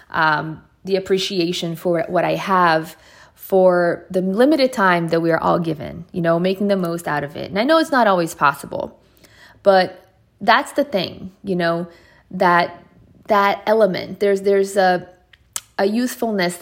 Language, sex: English, female